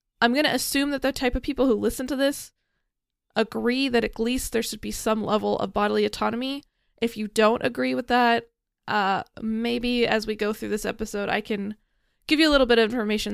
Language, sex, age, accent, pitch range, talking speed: English, female, 20-39, American, 215-255 Hz, 215 wpm